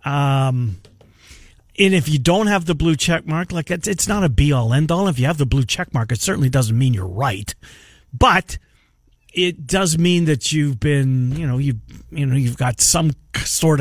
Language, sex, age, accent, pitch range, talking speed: English, male, 50-69, American, 135-195 Hz, 210 wpm